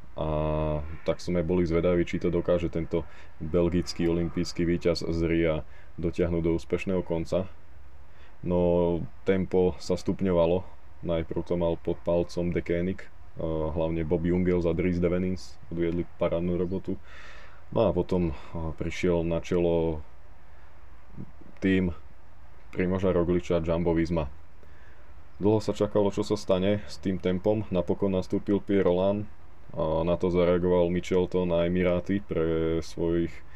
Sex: male